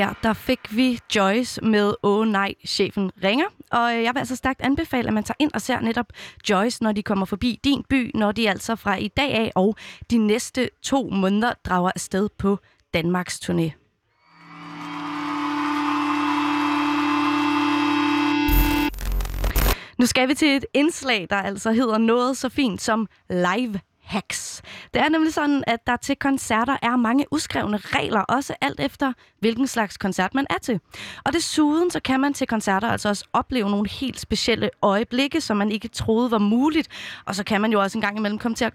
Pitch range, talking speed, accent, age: 200-260 Hz, 180 wpm, native, 20-39